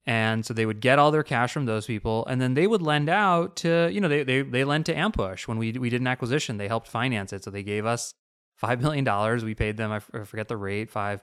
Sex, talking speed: male, 265 wpm